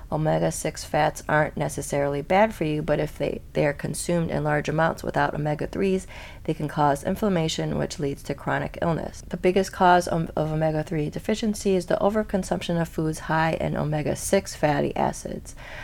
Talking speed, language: 165 wpm, English